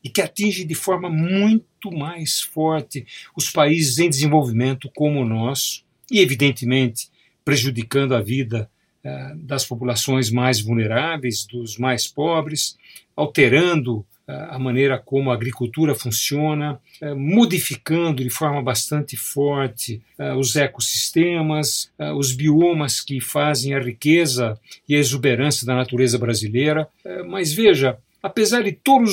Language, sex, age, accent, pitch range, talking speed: Portuguese, male, 50-69, Brazilian, 125-170 Hz, 130 wpm